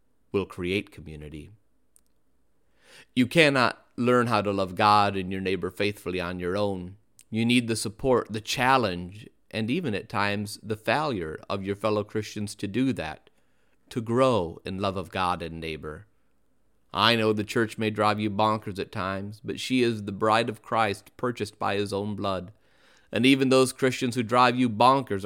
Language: English